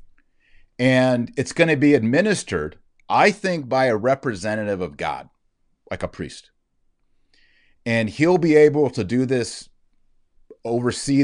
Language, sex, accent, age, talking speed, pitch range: English, male, American, 40-59, 130 wpm, 95-130 Hz